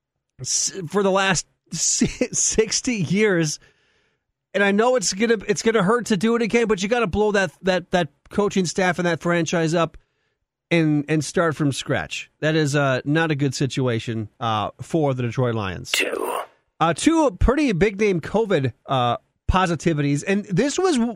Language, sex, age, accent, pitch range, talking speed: English, male, 40-59, American, 150-210 Hz, 165 wpm